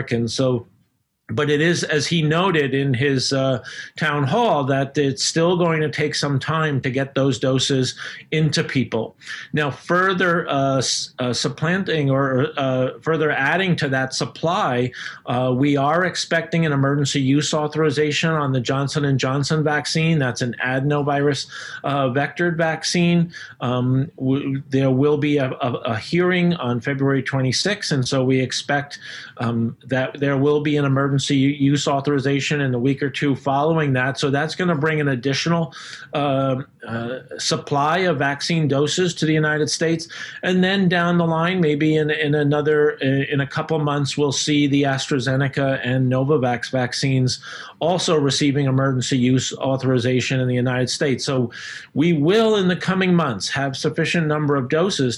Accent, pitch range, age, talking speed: American, 130-155 Hz, 40-59, 160 wpm